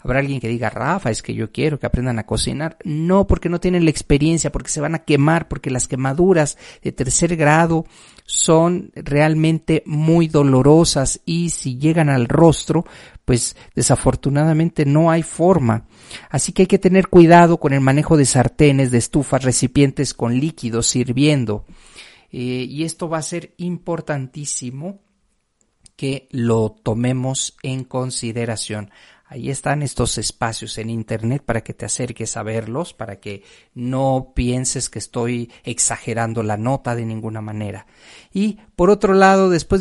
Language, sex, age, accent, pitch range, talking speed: Spanish, male, 40-59, Mexican, 125-175 Hz, 155 wpm